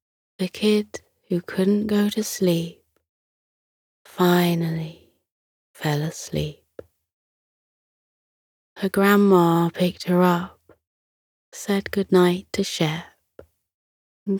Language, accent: English, British